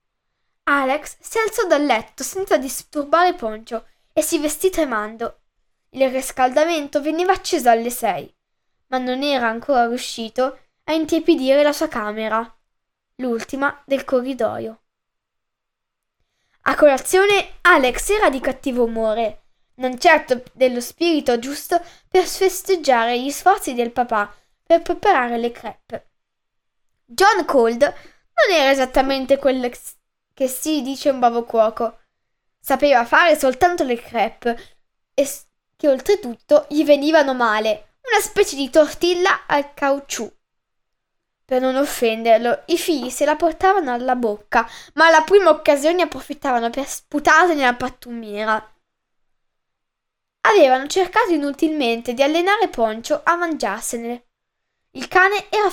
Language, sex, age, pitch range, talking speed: Italian, female, 10-29, 240-325 Hz, 120 wpm